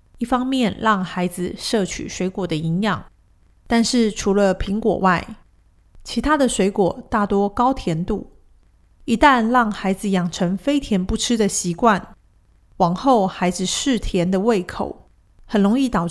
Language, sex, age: Chinese, female, 30-49